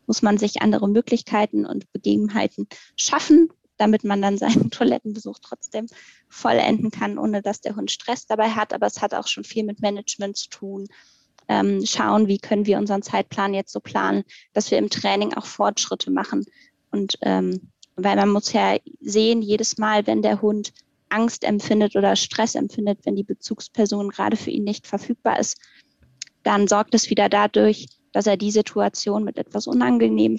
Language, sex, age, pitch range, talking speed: German, female, 20-39, 160-220 Hz, 175 wpm